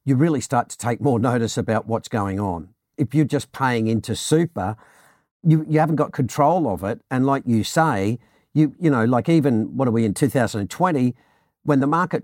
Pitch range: 110-145 Hz